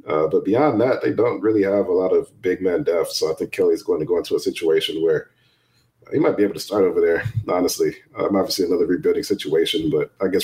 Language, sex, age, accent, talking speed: English, male, 30-49, American, 240 wpm